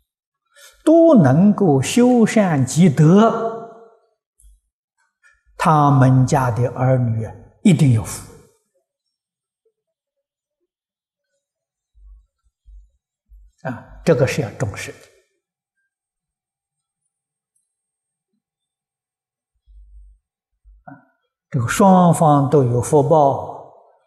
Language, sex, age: Chinese, male, 50-69